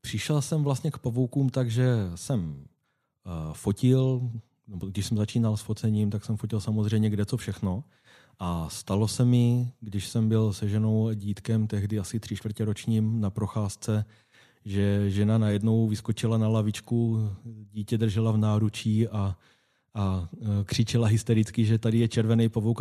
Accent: native